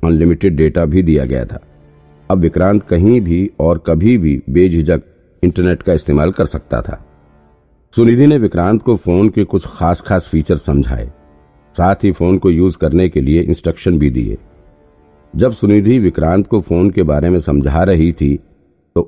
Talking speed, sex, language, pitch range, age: 170 wpm, male, Hindi, 75-95 Hz, 50-69